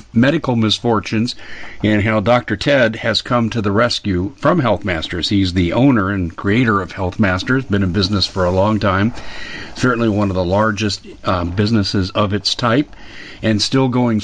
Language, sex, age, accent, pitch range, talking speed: English, male, 50-69, American, 100-120 Hz, 175 wpm